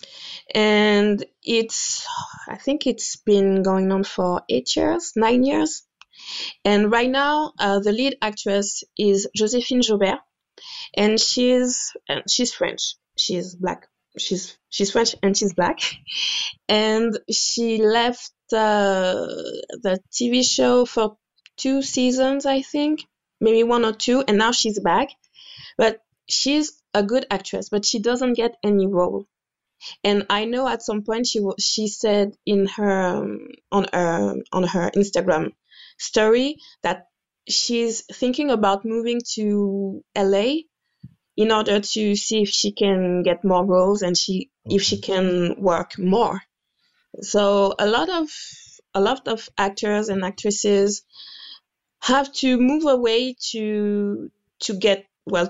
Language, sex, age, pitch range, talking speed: English, female, 20-39, 200-250 Hz, 140 wpm